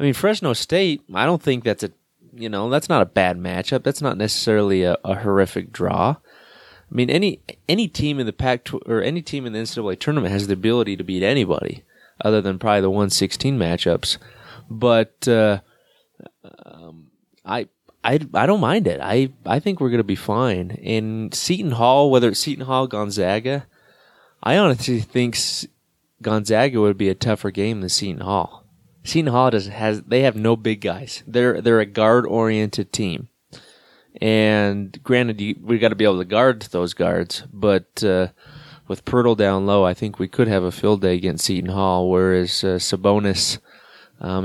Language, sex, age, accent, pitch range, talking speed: English, male, 20-39, American, 95-125 Hz, 180 wpm